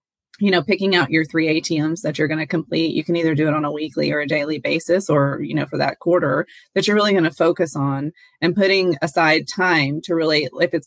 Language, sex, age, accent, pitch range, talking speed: English, female, 20-39, American, 150-175 Hz, 250 wpm